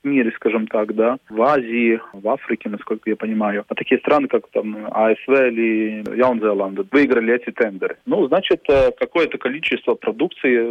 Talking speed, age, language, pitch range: 150 wpm, 20-39, Russian, 110-130 Hz